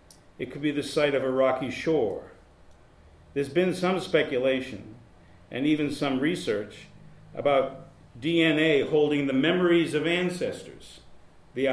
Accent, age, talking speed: American, 50-69, 130 wpm